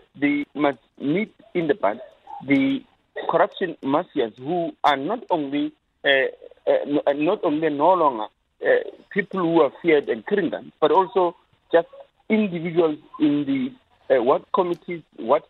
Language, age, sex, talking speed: English, 50-69, male, 145 wpm